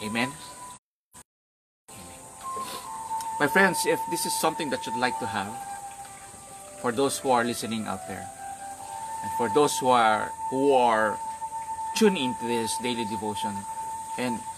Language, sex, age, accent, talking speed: English, male, 30-49, Filipino, 130 wpm